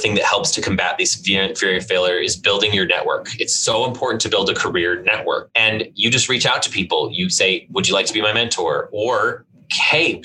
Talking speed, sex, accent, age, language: 220 wpm, male, American, 20-39, English